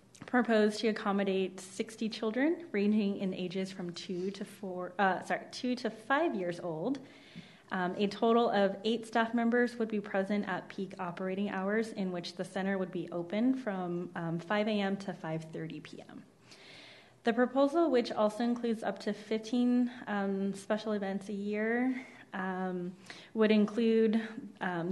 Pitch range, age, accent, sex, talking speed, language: 185-220 Hz, 20-39, American, female, 155 wpm, English